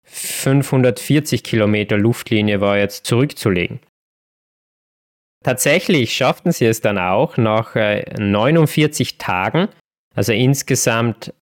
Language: German